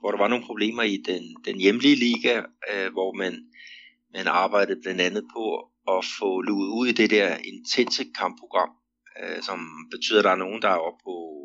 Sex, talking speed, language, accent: male, 200 wpm, Danish, native